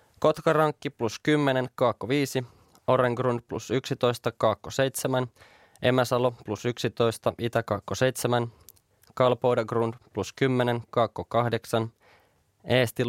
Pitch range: 110-130 Hz